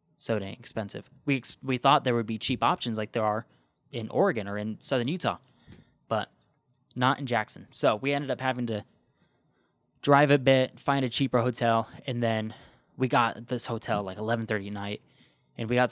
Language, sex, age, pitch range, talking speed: English, male, 10-29, 110-130 Hz, 195 wpm